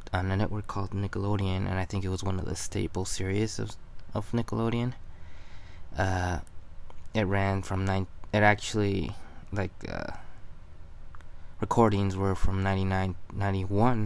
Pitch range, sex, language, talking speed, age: 90-100 Hz, male, English, 135 wpm, 20-39